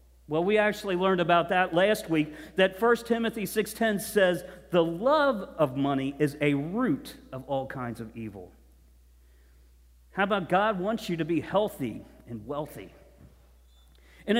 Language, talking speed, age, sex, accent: English, 150 wpm, 50-69, male, American